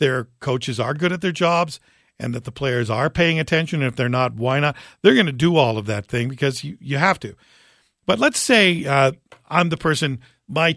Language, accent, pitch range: English, American, 125-170 Hz